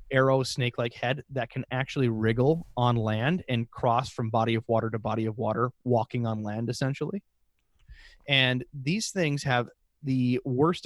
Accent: American